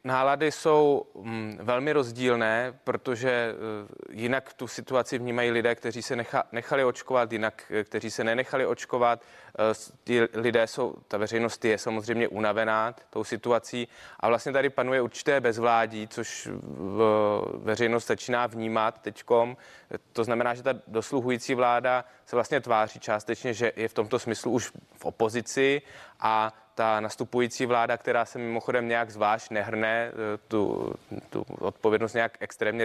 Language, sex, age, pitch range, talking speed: Czech, male, 20-39, 110-120 Hz, 130 wpm